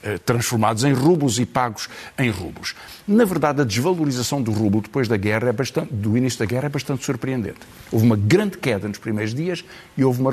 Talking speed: 205 wpm